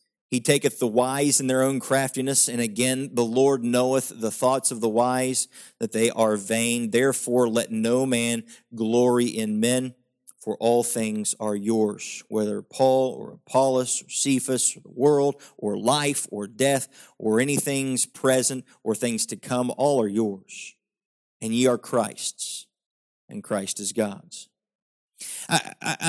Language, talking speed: English, 155 wpm